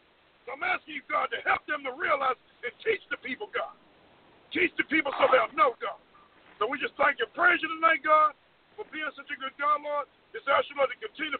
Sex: male